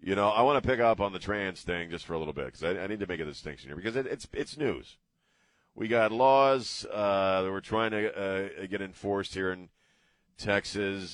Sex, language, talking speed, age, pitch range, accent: male, English, 235 wpm, 40-59, 90-100 Hz, American